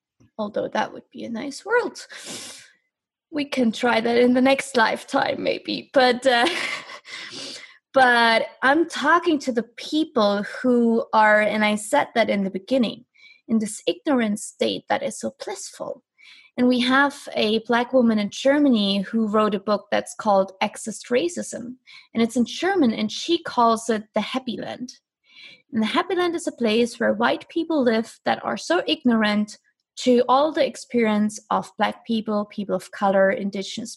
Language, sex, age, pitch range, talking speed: English, female, 20-39, 215-270 Hz, 165 wpm